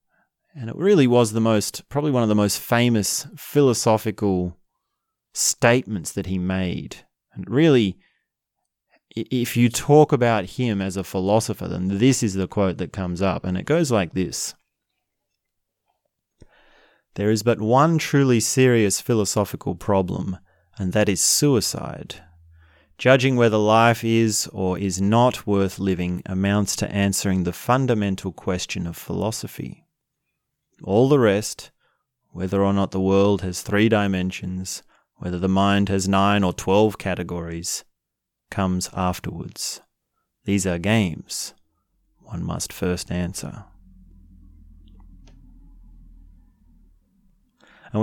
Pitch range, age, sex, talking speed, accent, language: 90-120 Hz, 30-49, male, 120 wpm, Australian, English